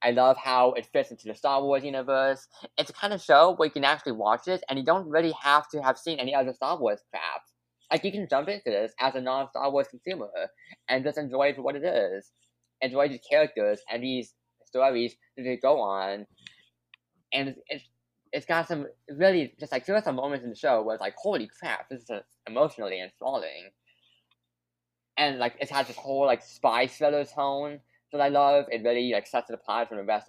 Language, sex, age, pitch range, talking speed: English, male, 10-29, 120-160 Hz, 215 wpm